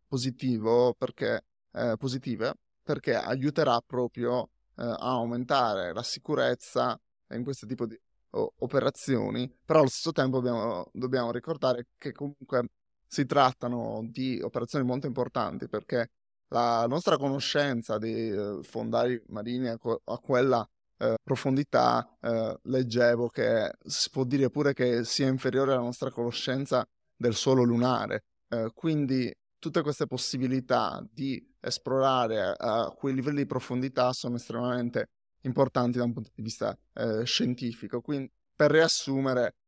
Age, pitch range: 20-39, 120-140 Hz